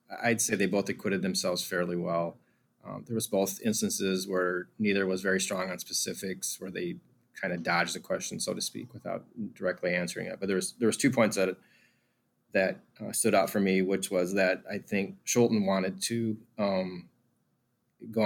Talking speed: 190 wpm